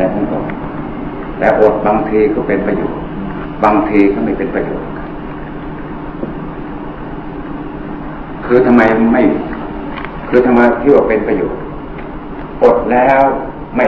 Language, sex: Thai, male